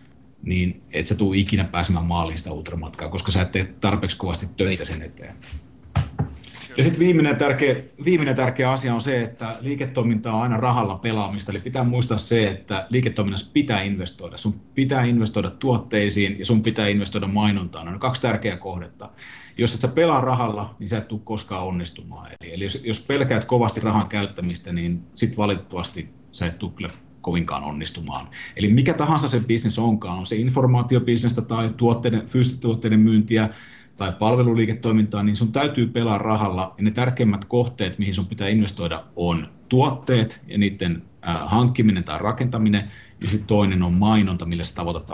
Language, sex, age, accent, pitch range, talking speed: Finnish, male, 30-49, native, 90-120 Hz, 165 wpm